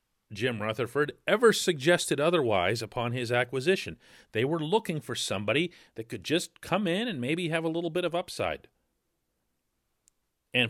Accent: American